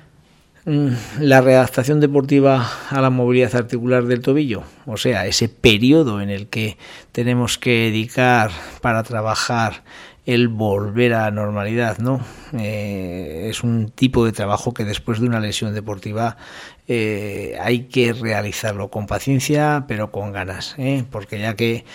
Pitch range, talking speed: 110-130 Hz, 140 wpm